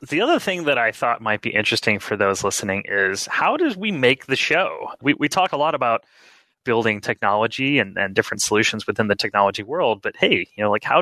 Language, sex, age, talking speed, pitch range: English, male, 30-49, 225 wpm, 100-135 Hz